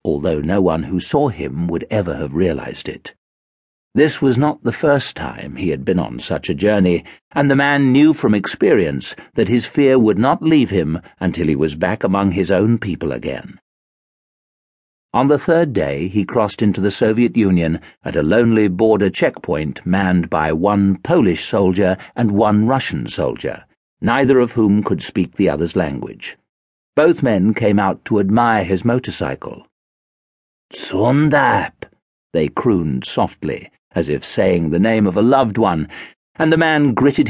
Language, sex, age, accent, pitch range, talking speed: English, male, 50-69, British, 95-125 Hz, 165 wpm